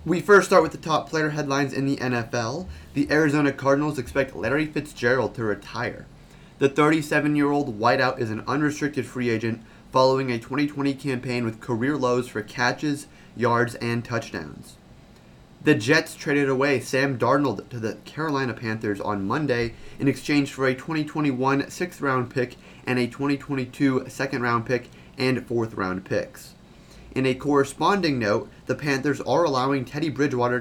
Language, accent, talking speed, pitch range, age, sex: English, American, 155 wpm, 115-140 Hz, 30-49, male